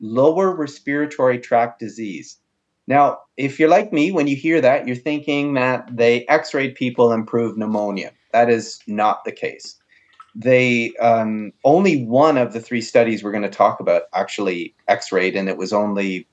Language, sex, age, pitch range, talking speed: English, male, 30-49, 105-140 Hz, 170 wpm